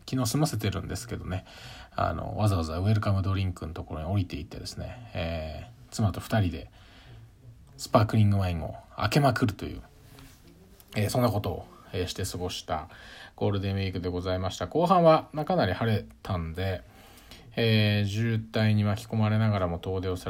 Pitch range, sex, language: 90-110 Hz, male, Japanese